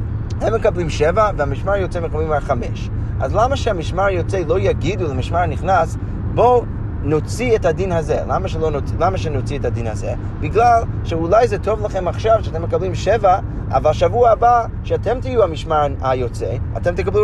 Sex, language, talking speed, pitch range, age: male, Hebrew, 155 wpm, 100-115 Hz, 30-49